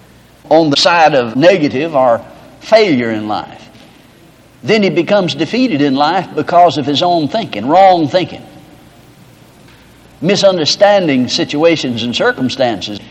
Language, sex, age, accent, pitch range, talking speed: English, male, 60-79, American, 125-175 Hz, 120 wpm